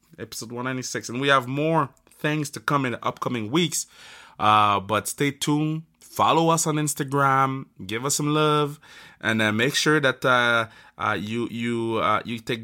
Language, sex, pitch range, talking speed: French, male, 115-145 Hz, 175 wpm